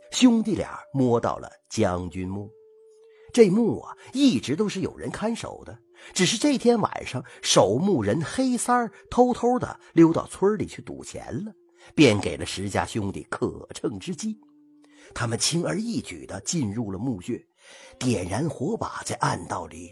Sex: male